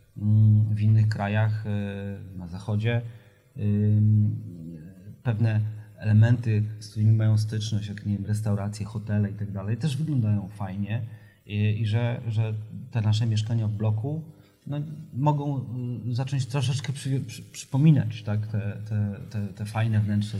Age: 30-49